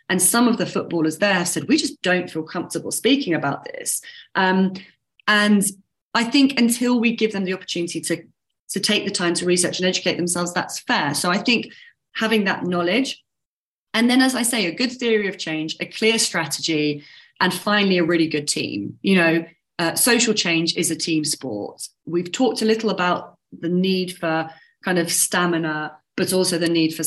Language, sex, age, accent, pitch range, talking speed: English, female, 30-49, British, 170-225 Hz, 195 wpm